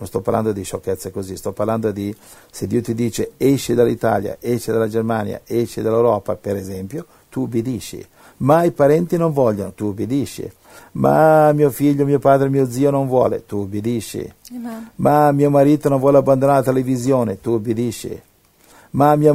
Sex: male